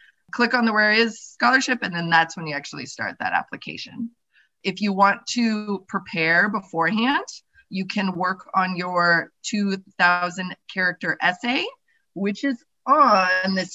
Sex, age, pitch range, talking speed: female, 20-39, 180-235 Hz, 145 wpm